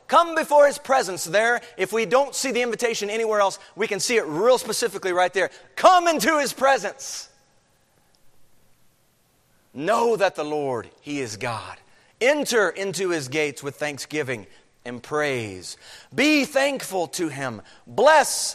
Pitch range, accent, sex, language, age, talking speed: 135-225 Hz, American, male, English, 40-59, 145 wpm